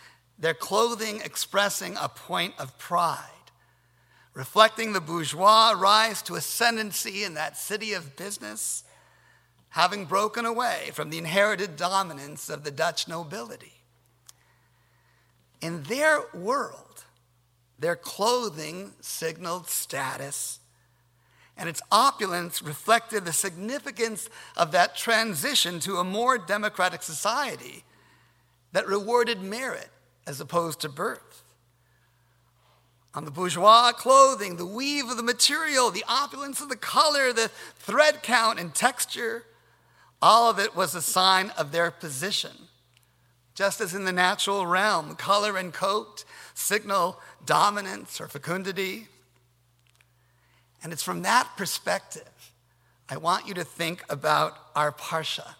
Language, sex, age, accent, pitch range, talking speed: English, male, 50-69, American, 145-220 Hz, 120 wpm